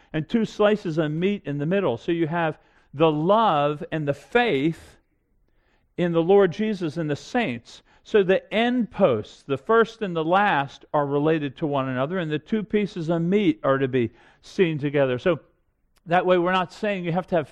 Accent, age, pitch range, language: American, 50-69, 160-220 Hz, English